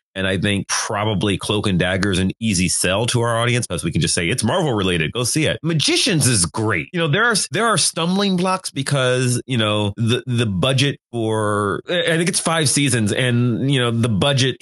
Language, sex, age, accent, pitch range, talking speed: English, male, 30-49, American, 95-125 Hz, 220 wpm